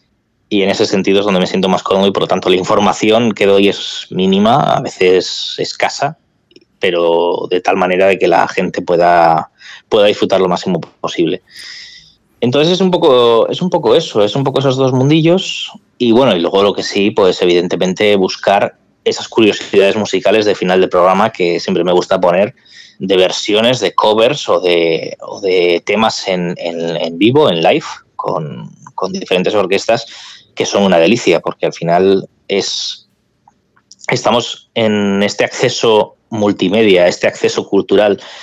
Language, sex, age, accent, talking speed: Spanish, male, 20-39, Spanish, 170 wpm